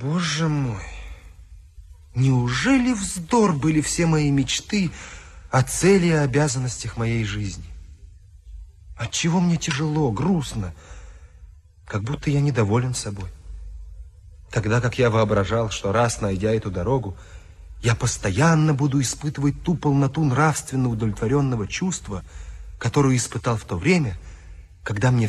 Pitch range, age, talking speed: 85-135 Hz, 30-49, 115 wpm